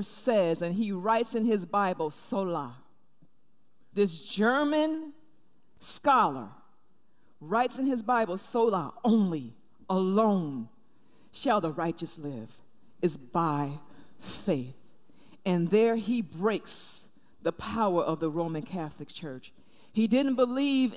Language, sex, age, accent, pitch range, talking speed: English, female, 40-59, American, 195-285 Hz, 110 wpm